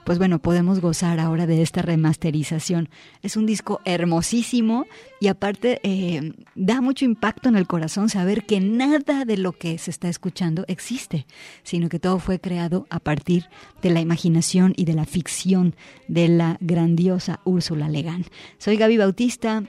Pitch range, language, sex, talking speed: 170-210 Hz, Spanish, female, 160 wpm